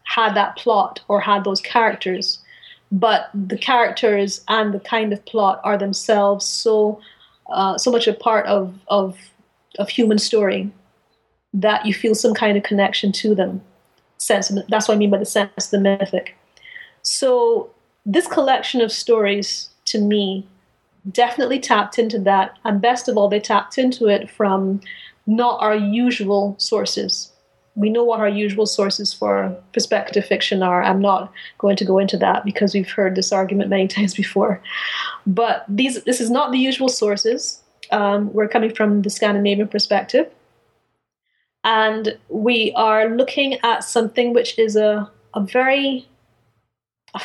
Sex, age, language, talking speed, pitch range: female, 30-49, English, 155 wpm, 200-235 Hz